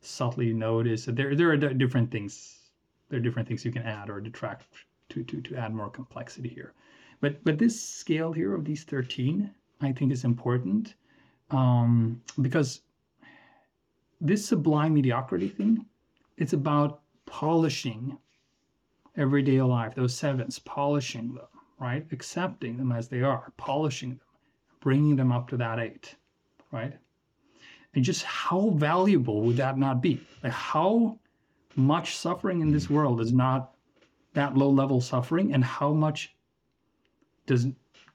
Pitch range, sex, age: 120-150 Hz, male, 30-49